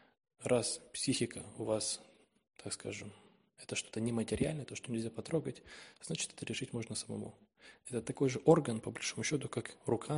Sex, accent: male, native